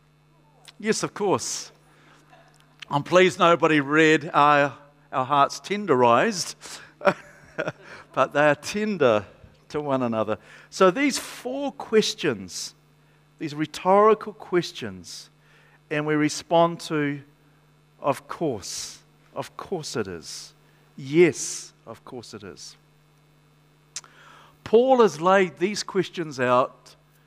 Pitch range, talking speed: 145-195 Hz, 100 wpm